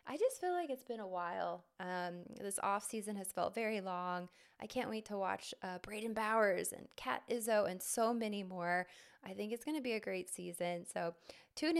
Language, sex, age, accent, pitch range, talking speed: English, female, 20-39, American, 185-240 Hz, 215 wpm